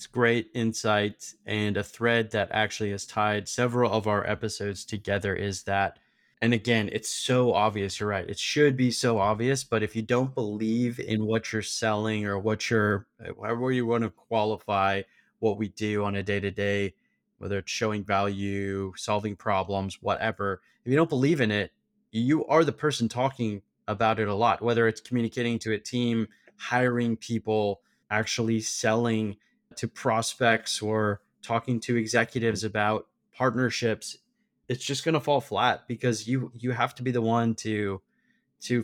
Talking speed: 170 wpm